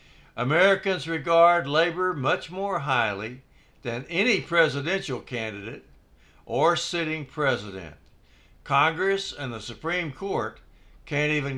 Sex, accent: male, American